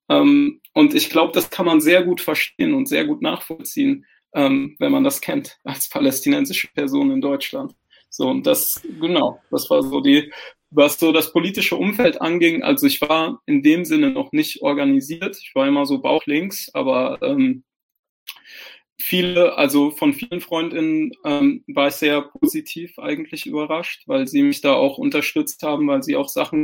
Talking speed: 175 wpm